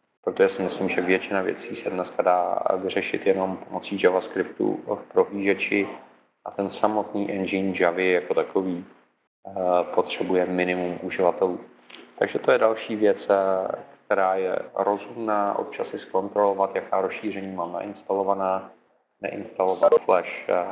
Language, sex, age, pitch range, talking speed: Czech, male, 30-49, 90-105 Hz, 120 wpm